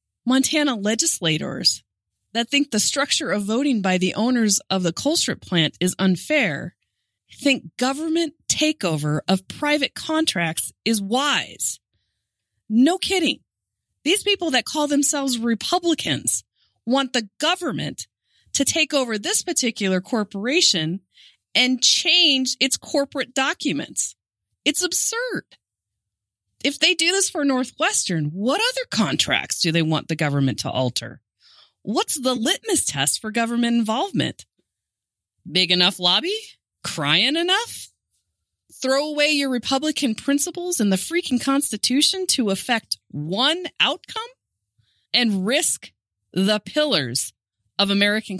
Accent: American